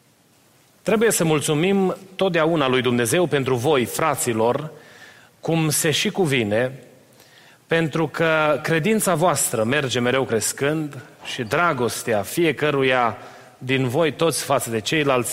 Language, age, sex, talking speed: Romanian, 30-49, male, 115 wpm